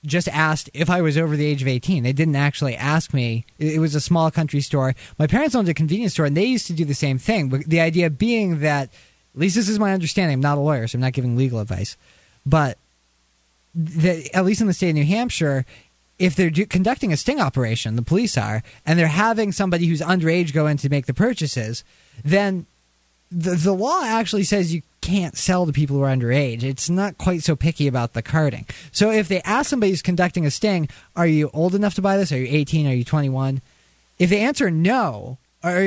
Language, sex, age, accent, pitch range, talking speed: English, male, 20-39, American, 135-190 Hz, 230 wpm